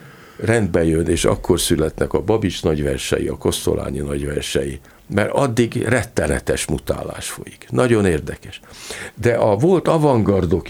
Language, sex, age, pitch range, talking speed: Hungarian, male, 50-69, 80-115 Hz, 120 wpm